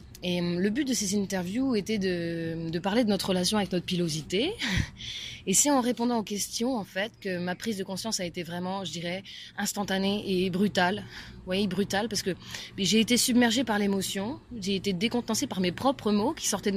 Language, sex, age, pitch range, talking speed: French, female, 20-39, 180-215 Hz, 200 wpm